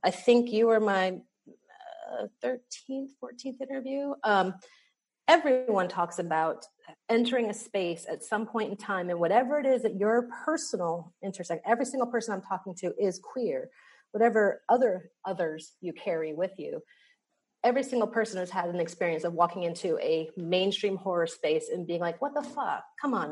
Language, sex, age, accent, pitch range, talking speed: English, female, 30-49, American, 175-245 Hz, 170 wpm